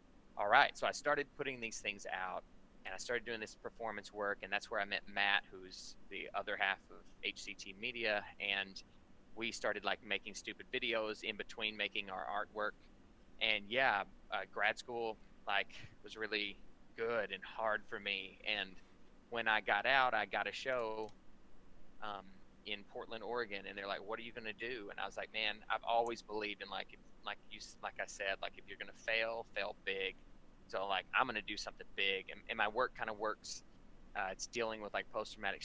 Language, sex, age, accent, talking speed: English, male, 20-39, American, 200 wpm